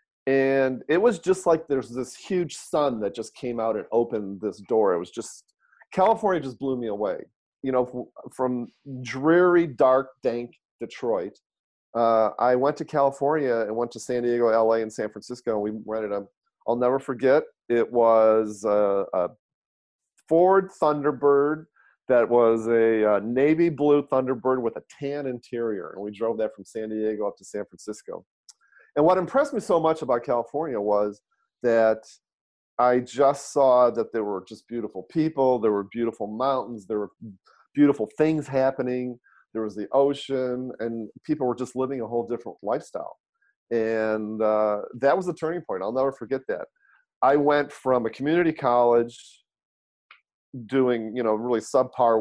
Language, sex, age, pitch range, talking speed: English, male, 40-59, 110-140 Hz, 165 wpm